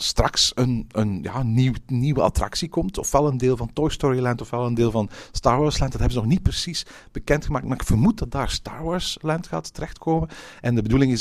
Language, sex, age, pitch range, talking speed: Dutch, male, 50-69, 110-155 Hz, 240 wpm